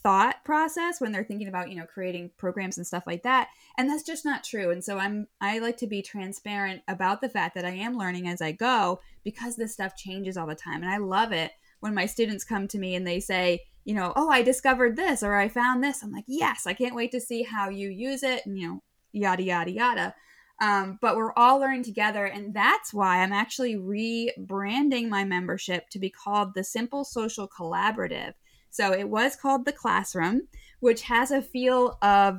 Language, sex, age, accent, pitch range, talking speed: English, female, 10-29, American, 190-240 Hz, 215 wpm